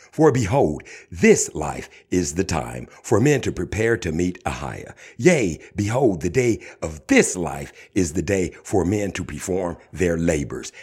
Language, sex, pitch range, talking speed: English, male, 75-105 Hz, 165 wpm